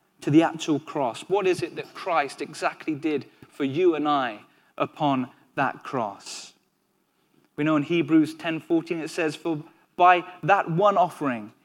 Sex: male